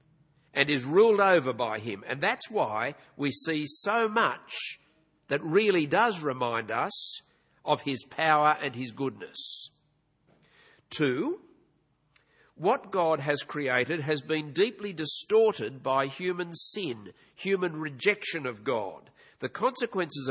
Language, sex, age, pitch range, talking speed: English, male, 50-69, 145-200 Hz, 125 wpm